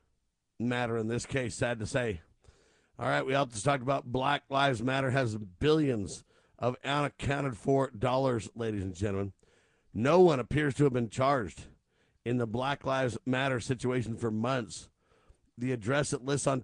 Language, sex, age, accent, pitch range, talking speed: English, male, 50-69, American, 115-140 Hz, 165 wpm